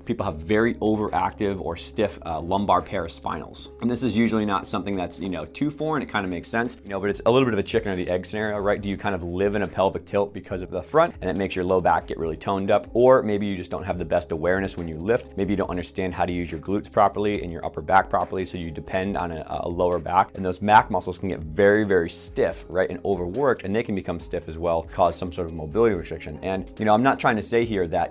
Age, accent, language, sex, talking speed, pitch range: 30-49, American, English, male, 285 wpm, 85-105 Hz